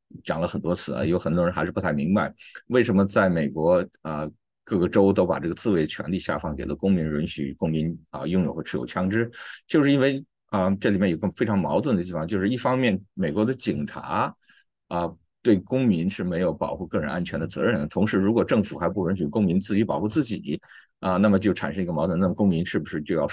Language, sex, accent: Chinese, male, native